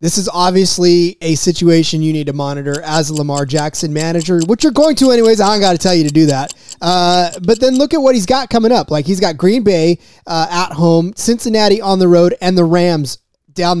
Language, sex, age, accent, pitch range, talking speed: English, male, 20-39, American, 165-205 Hz, 235 wpm